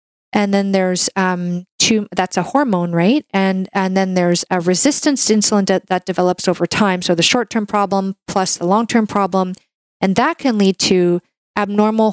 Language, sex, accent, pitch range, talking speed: English, female, American, 180-215 Hz, 175 wpm